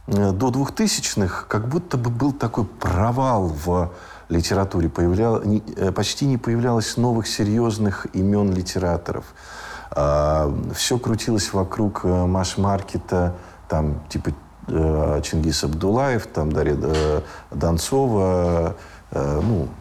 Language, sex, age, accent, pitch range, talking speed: Russian, male, 50-69, native, 75-105 Hz, 80 wpm